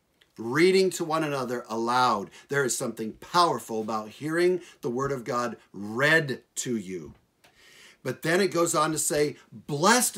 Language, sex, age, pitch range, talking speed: English, male, 50-69, 135-185 Hz, 155 wpm